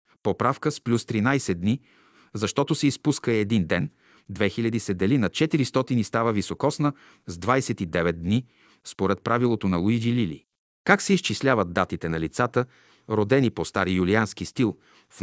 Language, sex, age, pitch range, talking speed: Bulgarian, male, 40-59, 95-125 Hz, 150 wpm